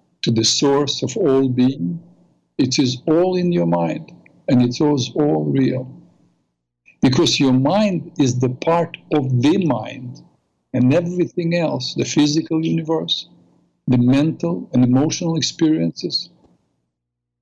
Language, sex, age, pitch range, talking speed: English, male, 50-69, 115-165 Hz, 125 wpm